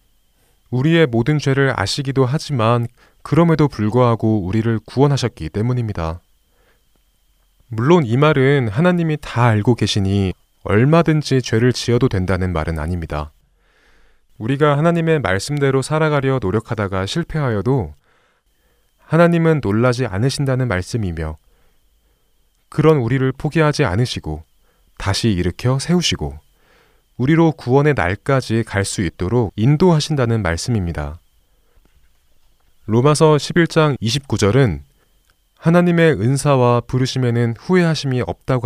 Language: Korean